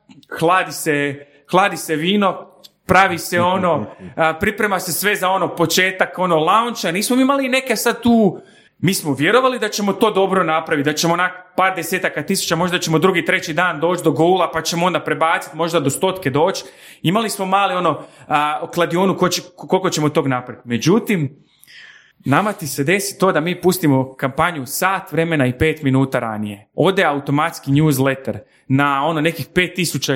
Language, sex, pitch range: Croatian, male, 155-215 Hz